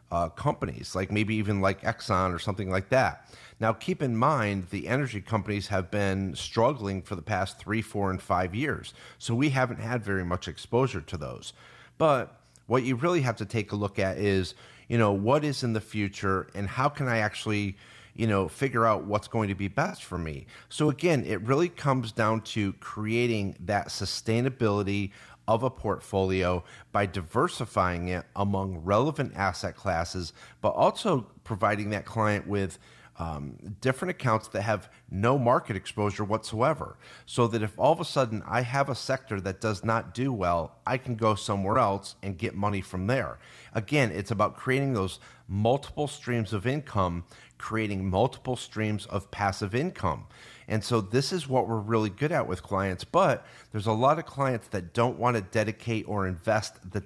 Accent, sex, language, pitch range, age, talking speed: American, male, English, 100-120 Hz, 40-59, 180 wpm